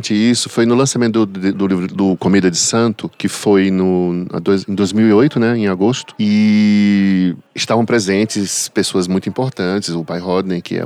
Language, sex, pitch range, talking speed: Portuguese, male, 100-125 Hz, 170 wpm